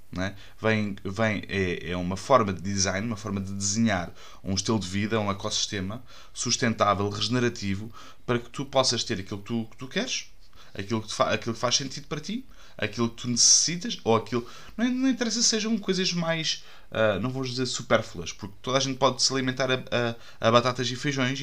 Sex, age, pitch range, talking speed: male, 20-39, 105-140 Hz, 200 wpm